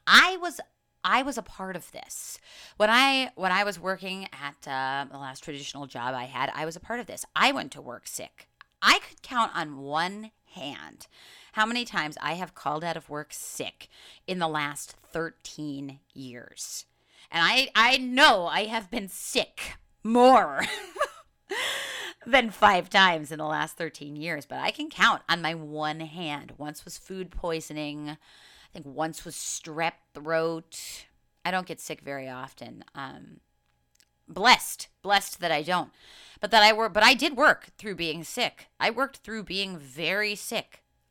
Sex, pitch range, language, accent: female, 155-225 Hz, English, American